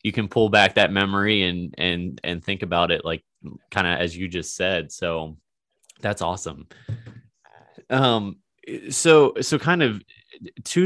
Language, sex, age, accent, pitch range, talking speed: English, male, 20-39, American, 90-110 Hz, 155 wpm